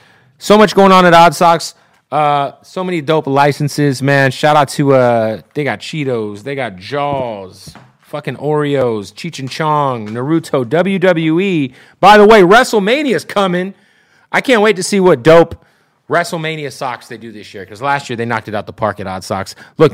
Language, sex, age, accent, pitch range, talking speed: English, male, 30-49, American, 110-150 Hz, 180 wpm